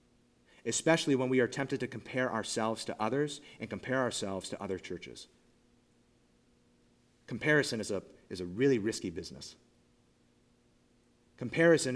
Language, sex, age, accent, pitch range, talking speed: English, male, 30-49, American, 110-150 Hz, 120 wpm